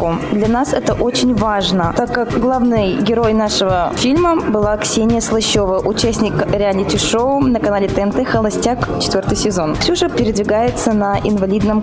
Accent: native